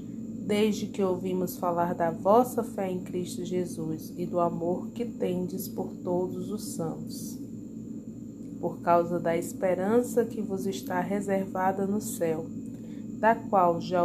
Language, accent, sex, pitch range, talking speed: Portuguese, Brazilian, female, 180-240 Hz, 135 wpm